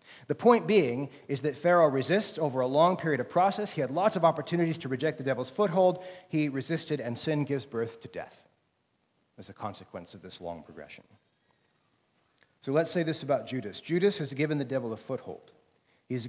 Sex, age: male, 40-59